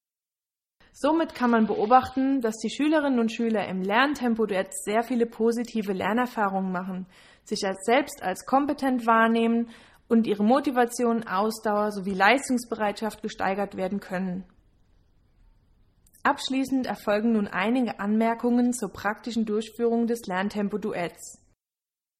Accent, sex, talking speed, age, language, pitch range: German, female, 115 wpm, 20-39, German, 200-245 Hz